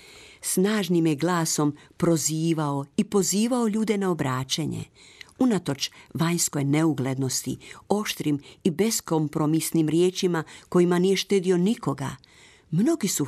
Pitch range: 150-200 Hz